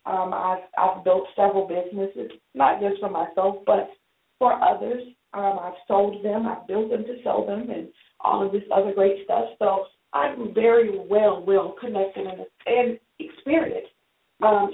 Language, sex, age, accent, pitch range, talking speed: English, female, 40-59, American, 195-245 Hz, 165 wpm